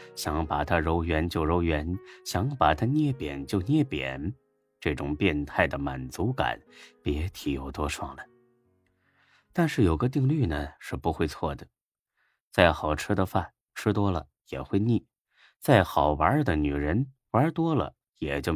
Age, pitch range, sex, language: 30-49, 75-120 Hz, male, Chinese